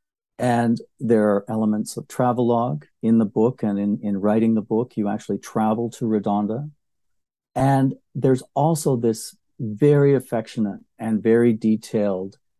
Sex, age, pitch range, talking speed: male, 50-69, 105-125 Hz, 140 wpm